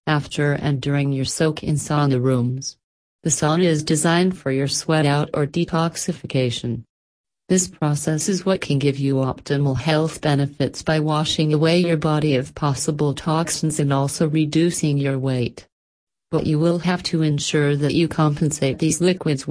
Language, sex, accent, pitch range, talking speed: English, female, American, 140-160 Hz, 160 wpm